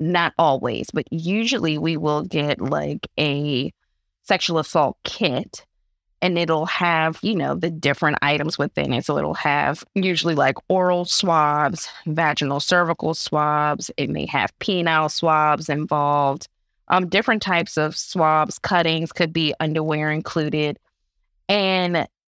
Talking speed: 130 wpm